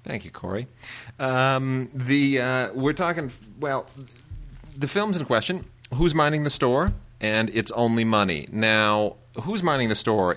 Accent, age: American, 30-49